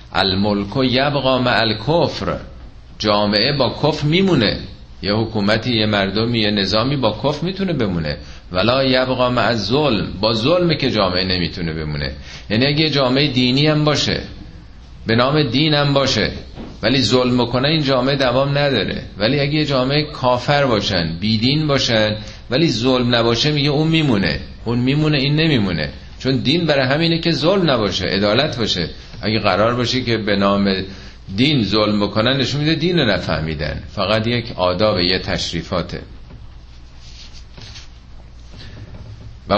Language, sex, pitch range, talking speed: Persian, male, 95-140 Hz, 140 wpm